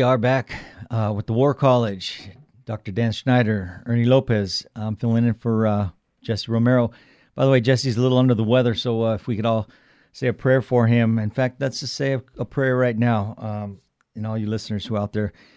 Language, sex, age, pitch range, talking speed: English, male, 50-69, 100-120 Hz, 225 wpm